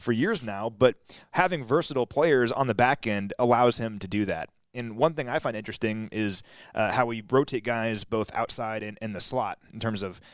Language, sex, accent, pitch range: English, male, American, 105-130 Hz